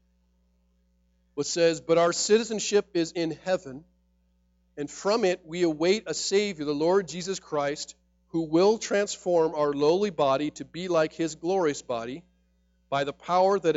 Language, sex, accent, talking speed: English, male, American, 155 wpm